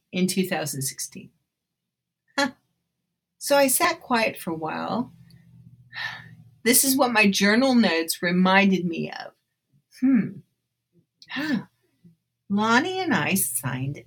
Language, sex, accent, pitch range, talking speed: English, female, American, 180-250 Hz, 100 wpm